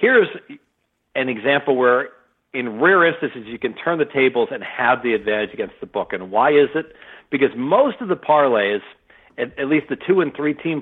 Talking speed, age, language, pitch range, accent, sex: 190 wpm, 50-69, English, 115-145 Hz, American, male